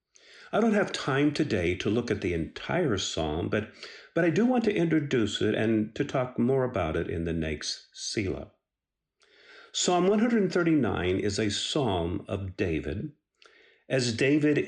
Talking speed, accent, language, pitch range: 155 wpm, American, English, 105-170 Hz